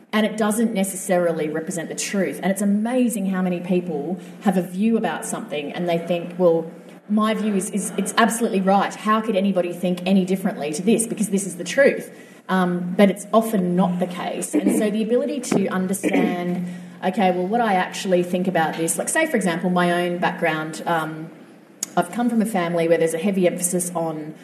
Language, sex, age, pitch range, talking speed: English, female, 30-49, 175-220 Hz, 200 wpm